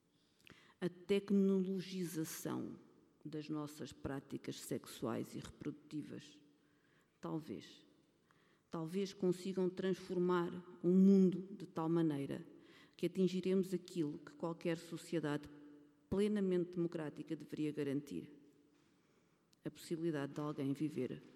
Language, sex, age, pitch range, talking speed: Portuguese, female, 50-69, 150-190 Hz, 90 wpm